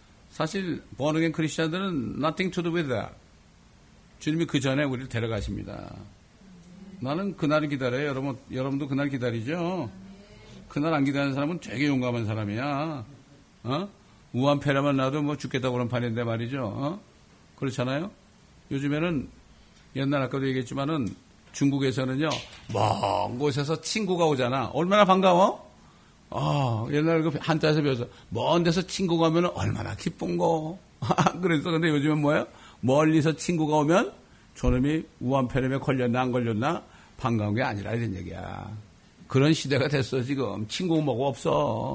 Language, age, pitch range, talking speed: English, 60-79, 125-160 Hz, 120 wpm